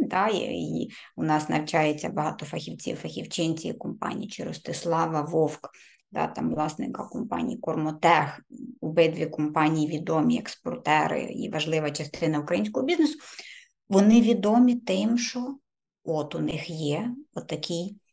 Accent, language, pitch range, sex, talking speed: native, Ukrainian, 165-240 Hz, female, 110 wpm